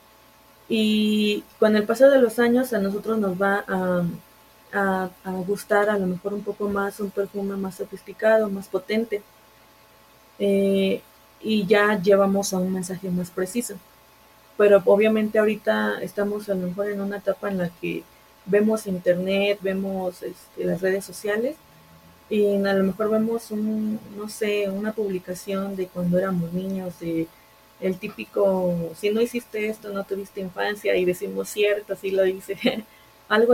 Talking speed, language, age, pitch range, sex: 155 wpm, Spanish, 20-39, 190-215 Hz, female